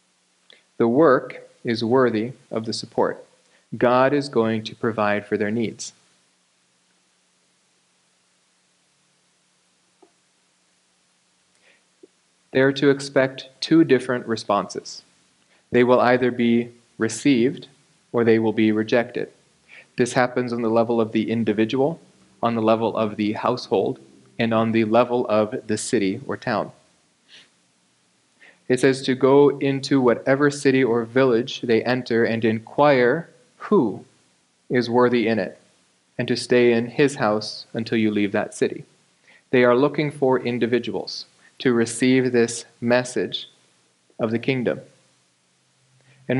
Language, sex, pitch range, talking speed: English, male, 110-130 Hz, 125 wpm